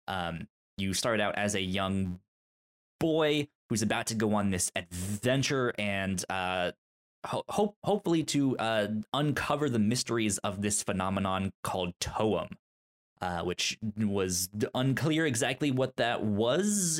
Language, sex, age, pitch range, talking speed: English, male, 20-39, 95-120 Hz, 130 wpm